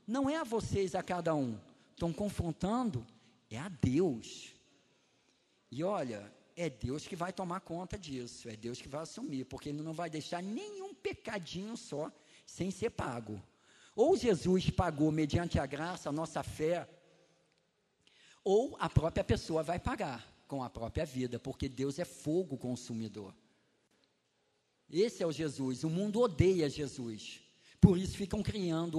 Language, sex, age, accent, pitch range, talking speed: Portuguese, male, 50-69, Brazilian, 140-205 Hz, 155 wpm